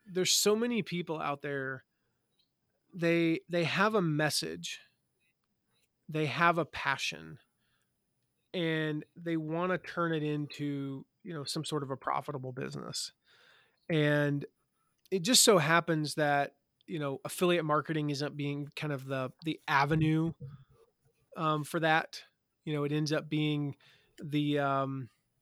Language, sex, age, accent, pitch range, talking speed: English, male, 30-49, American, 145-165 Hz, 135 wpm